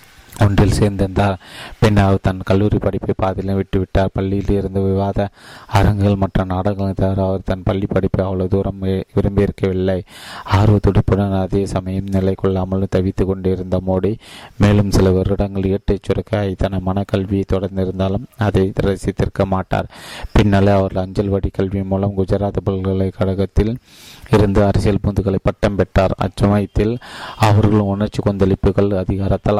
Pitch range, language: 95-100 Hz, Tamil